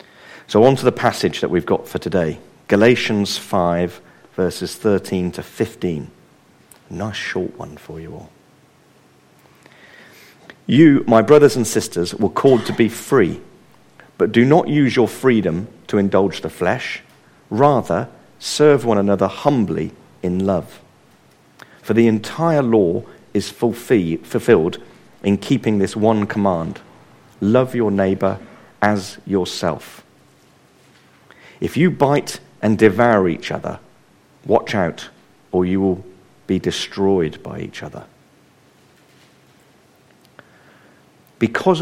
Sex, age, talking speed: male, 50-69, 120 wpm